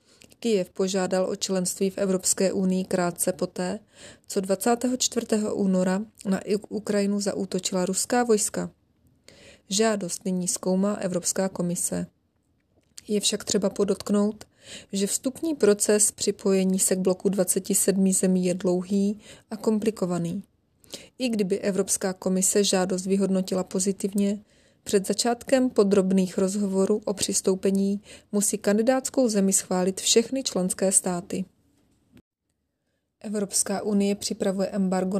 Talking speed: 105 wpm